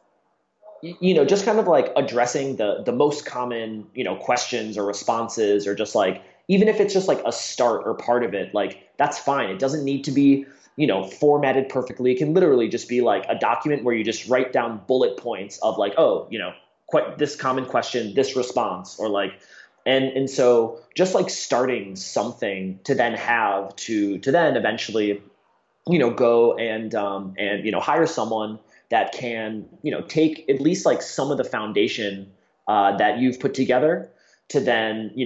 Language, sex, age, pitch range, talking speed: English, male, 30-49, 110-140 Hz, 195 wpm